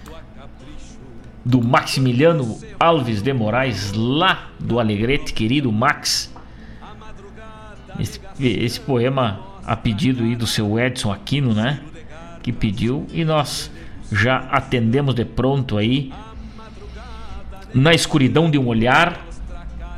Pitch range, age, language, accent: 115-145 Hz, 60-79, Portuguese, Brazilian